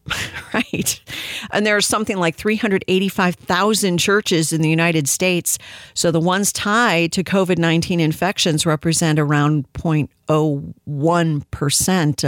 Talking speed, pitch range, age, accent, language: 110 wpm, 155-215 Hz, 50-69, American, English